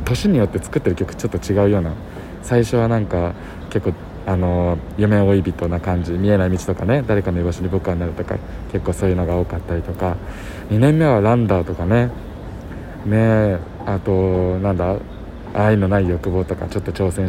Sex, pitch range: male, 90-115 Hz